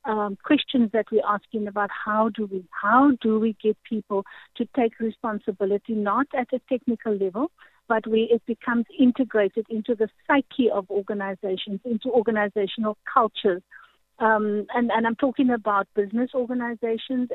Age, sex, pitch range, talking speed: 50-69, female, 215-250 Hz, 150 wpm